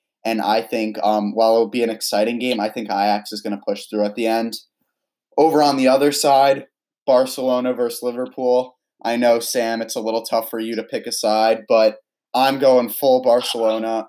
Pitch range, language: 110-125 Hz, English